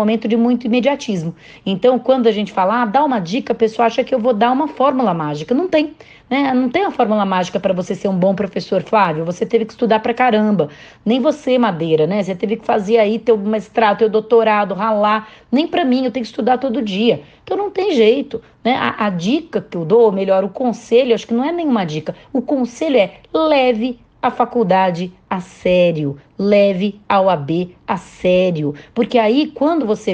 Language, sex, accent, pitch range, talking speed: Portuguese, female, Brazilian, 200-255 Hz, 210 wpm